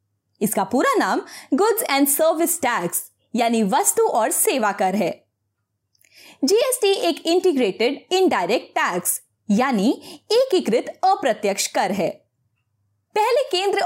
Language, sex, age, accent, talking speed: Hindi, female, 20-39, native, 115 wpm